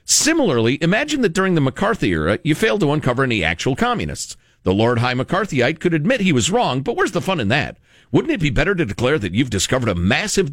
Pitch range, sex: 125-205 Hz, male